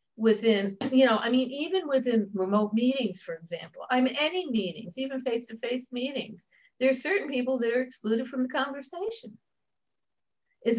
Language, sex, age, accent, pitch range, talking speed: English, female, 60-79, American, 210-265 Hz, 155 wpm